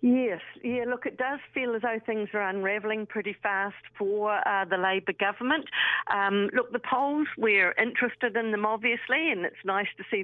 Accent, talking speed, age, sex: British, 190 wpm, 50-69, female